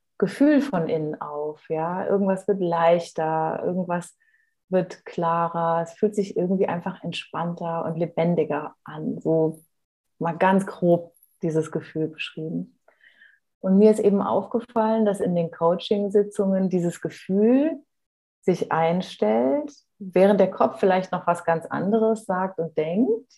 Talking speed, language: 130 wpm, German